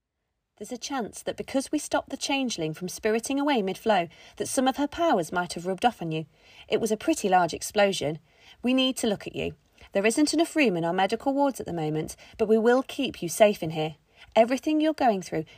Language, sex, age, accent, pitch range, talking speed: English, female, 30-49, British, 175-275 Hz, 225 wpm